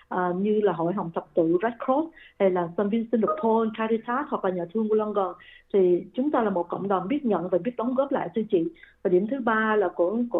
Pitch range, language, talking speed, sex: 180-235 Hz, Vietnamese, 240 wpm, female